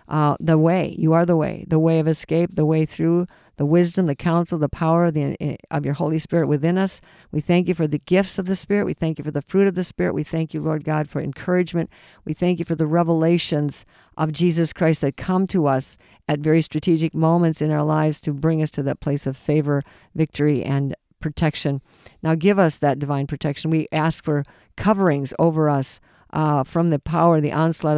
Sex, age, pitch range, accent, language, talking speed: female, 50-69, 150-170 Hz, American, English, 215 wpm